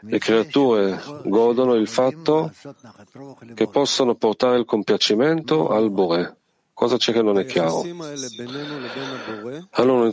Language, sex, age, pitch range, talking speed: Italian, male, 40-59, 110-135 Hz, 120 wpm